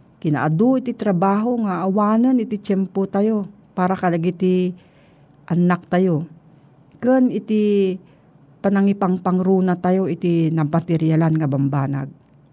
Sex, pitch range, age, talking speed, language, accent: female, 160-210 Hz, 40-59, 105 wpm, Filipino, native